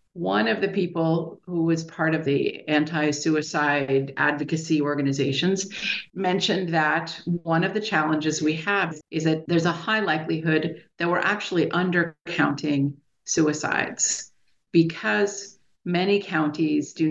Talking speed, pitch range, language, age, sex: 125 wpm, 145-170 Hz, English, 50-69, female